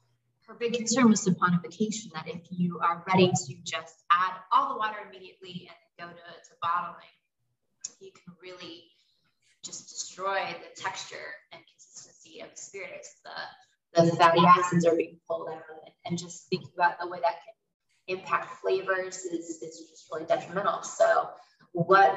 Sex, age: female, 20-39